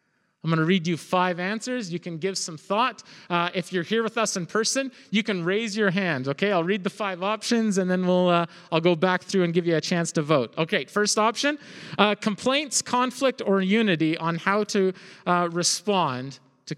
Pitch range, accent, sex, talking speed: 175-225 Hz, American, male, 215 wpm